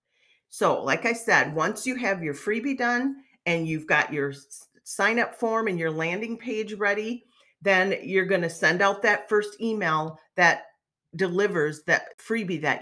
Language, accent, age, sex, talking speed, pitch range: English, American, 40-59, female, 165 wpm, 150-210 Hz